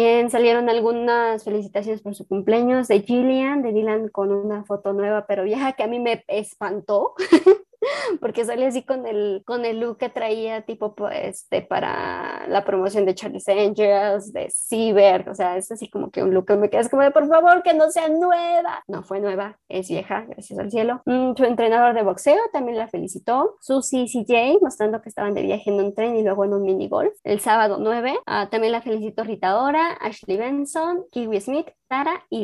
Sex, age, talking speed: male, 20-39, 200 wpm